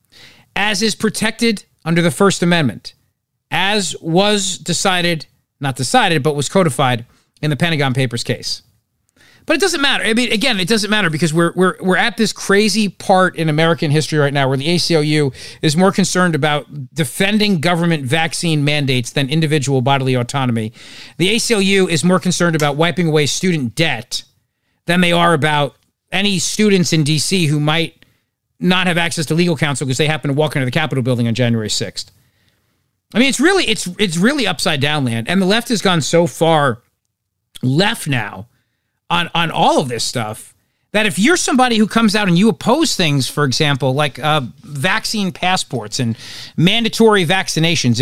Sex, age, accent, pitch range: male, 40-59, American, 130-190 Hz